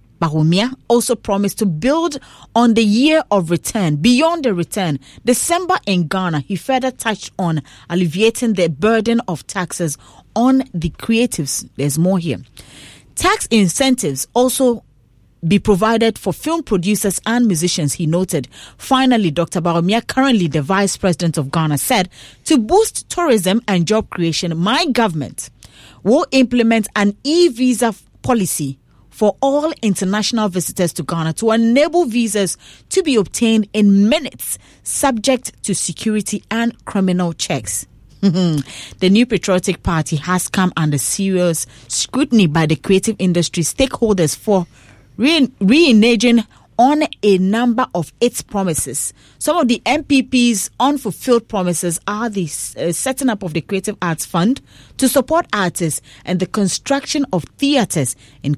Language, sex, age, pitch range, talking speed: English, female, 40-59, 170-240 Hz, 135 wpm